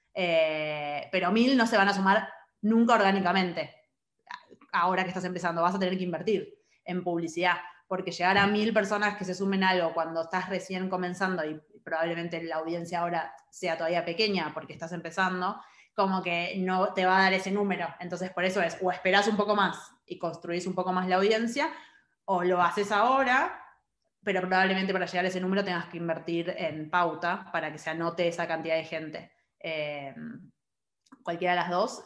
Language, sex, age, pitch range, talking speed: Spanish, female, 20-39, 175-200 Hz, 185 wpm